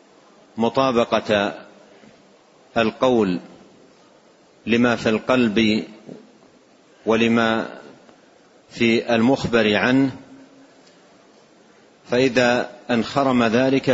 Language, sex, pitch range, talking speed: Arabic, male, 110-135 Hz, 50 wpm